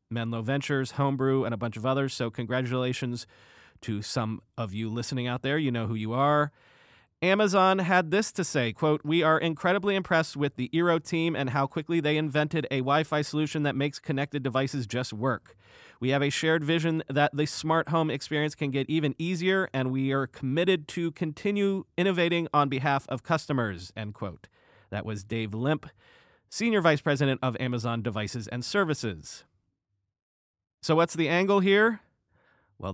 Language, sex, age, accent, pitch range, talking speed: English, male, 30-49, American, 120-160 Hz, 175 wpm